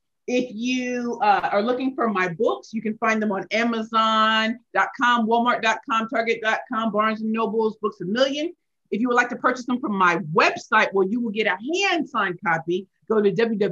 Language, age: English, 40-59